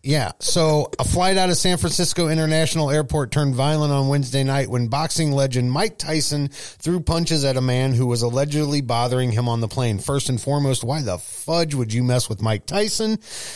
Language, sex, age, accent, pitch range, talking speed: English, male, 30-49, American, 120-150 Hz, 200 wpm